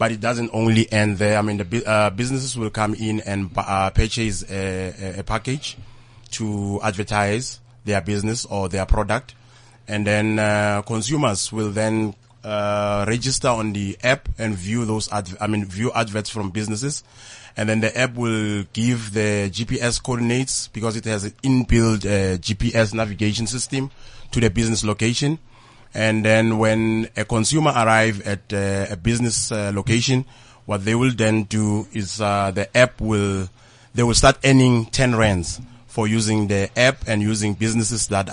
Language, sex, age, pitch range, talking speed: English, male, 30-49, 105-120 Hz, 165 wpm